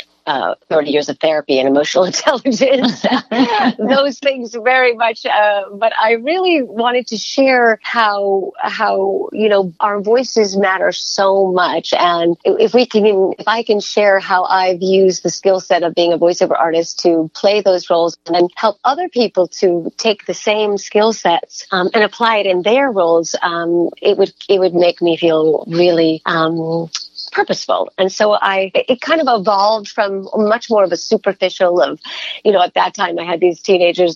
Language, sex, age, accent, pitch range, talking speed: English, female, 40-59, American, 175-215 Hz, 185 wpm